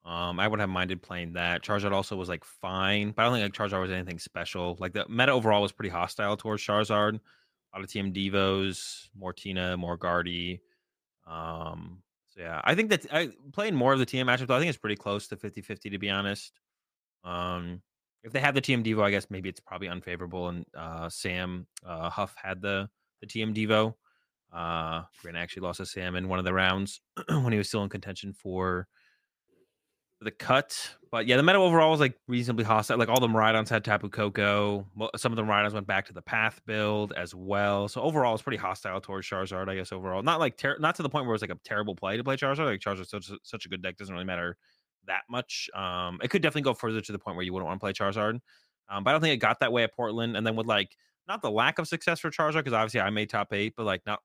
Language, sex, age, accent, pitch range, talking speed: English, male, 20-39, American, 95-110 Hz, 240 wpm